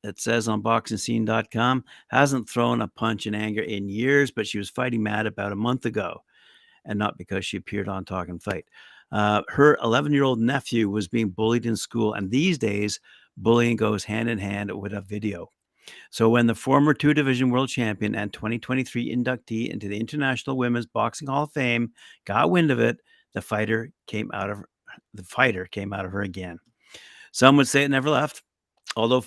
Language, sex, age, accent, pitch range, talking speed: English, male, 50-69, American, 105-120 Hz, 190 wpm